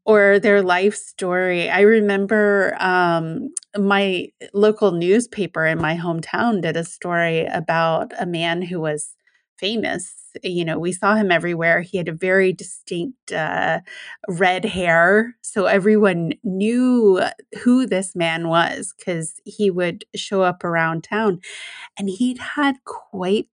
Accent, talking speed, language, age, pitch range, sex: American, 140 wpm, English, 30-49, 175-215 Hz, female